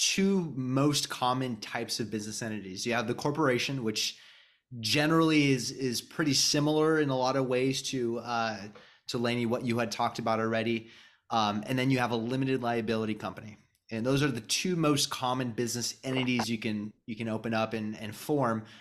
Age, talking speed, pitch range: 20-39, 190 wpm, 115-140 Hz